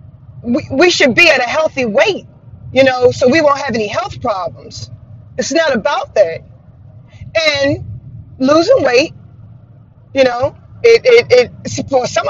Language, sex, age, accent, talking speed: English, female, 30-49, American, 150 wpm